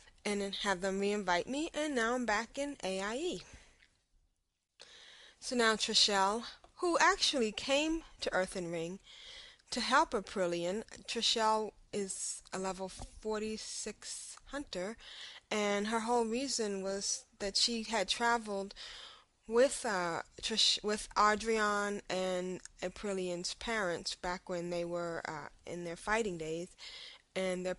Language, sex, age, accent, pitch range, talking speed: English, female, 20-39, American, 175-225 Hz, 125 wpm